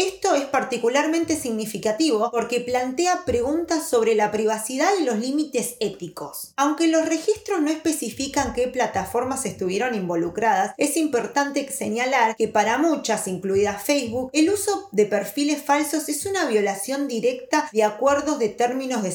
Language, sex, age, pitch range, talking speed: Spanish, female, 20-39, 210-290 Hz, 140 wpm